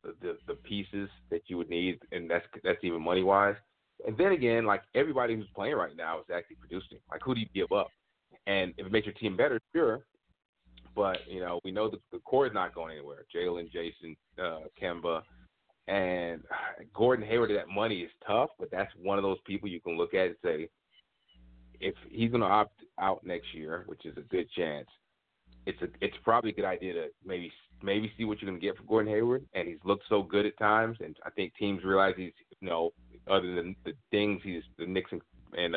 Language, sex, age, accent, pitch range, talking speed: English, male, 30-49, American, 85-115 Hz, 215 wpm